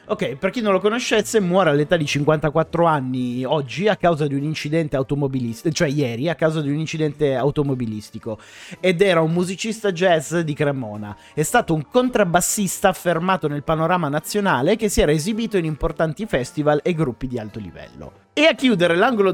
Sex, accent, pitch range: male, native, 145-200 Hz